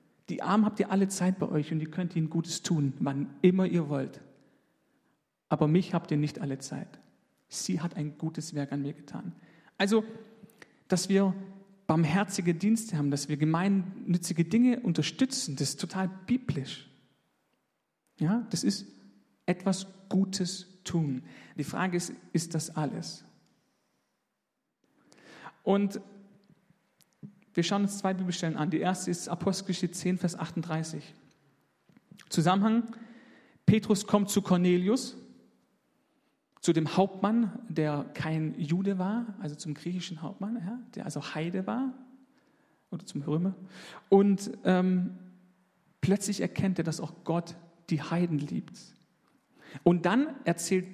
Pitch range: 160-205 Hz